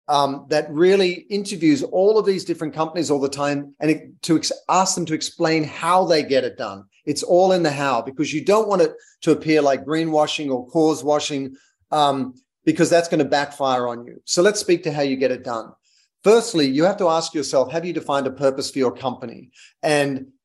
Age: 40-59